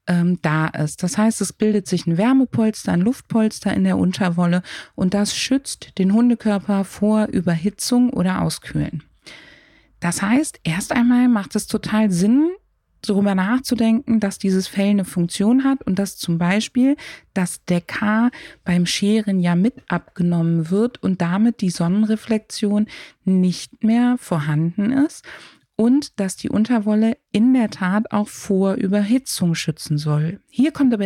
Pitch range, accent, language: 180-230 Hz, German, German